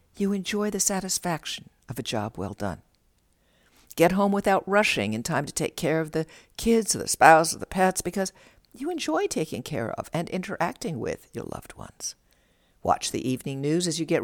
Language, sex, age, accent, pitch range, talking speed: English, female, 60-79, American, 135-195 Hz, 195 wpm